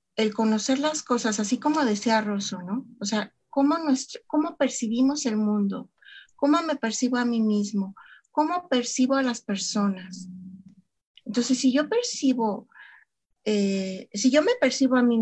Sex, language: female, Spanish